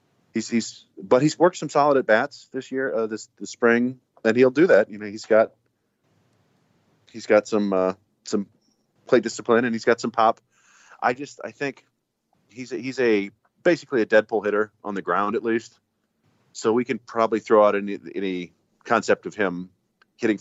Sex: male